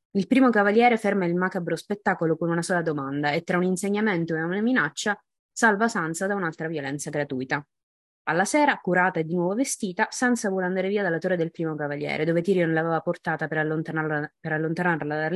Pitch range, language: 165-210 Hz, Italian